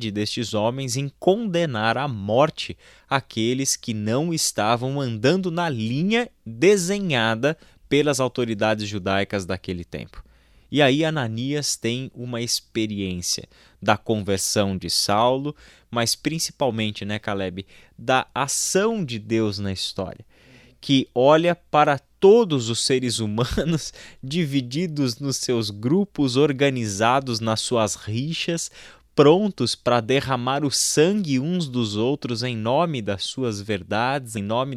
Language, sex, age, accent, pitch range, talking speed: Portuguese, male, 20-39, Brazilian, 110-145 Hz, 120 wpm